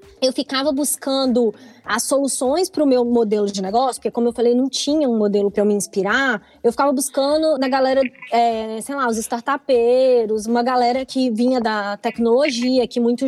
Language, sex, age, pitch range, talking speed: Portuguese, female, 20-39, 230-300 Hz, 185 wpm